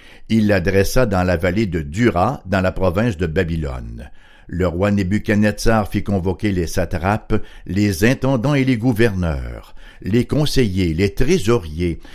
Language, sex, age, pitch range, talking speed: French, male, 60-79, 95-135 Hz, 140 wpm